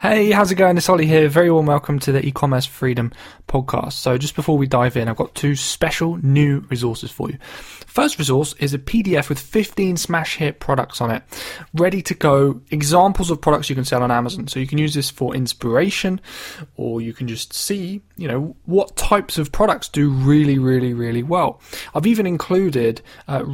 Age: 20-39